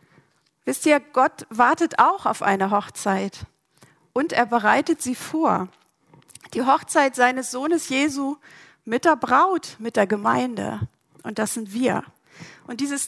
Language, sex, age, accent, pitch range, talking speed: German, female, 50-69, German, 215-275 Hz, 140 wpm